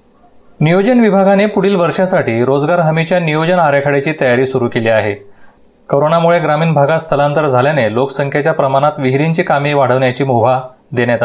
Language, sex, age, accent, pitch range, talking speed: Marathi, male, 30-49, native, 130-165 Hz, 130 wpm